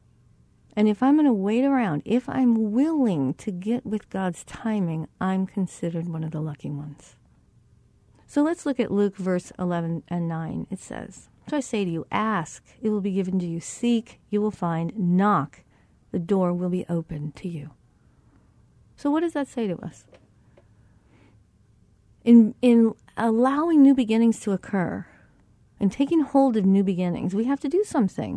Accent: American